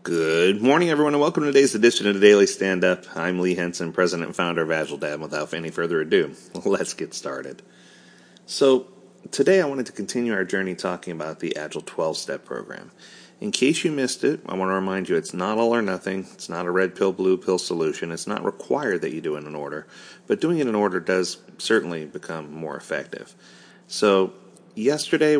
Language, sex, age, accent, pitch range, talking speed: English, male, 30-49, American, 85-120 Hz, 205 wpm